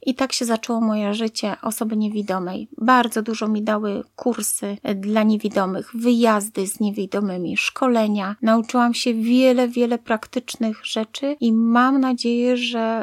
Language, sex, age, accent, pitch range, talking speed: Polish, female, 30-49, native, 220-250 Hz, 135 wpm